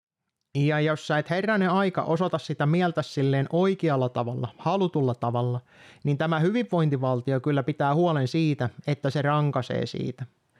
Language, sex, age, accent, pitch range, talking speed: Finnish, male, 30-49, native, 130-165 Hz, 140 wpm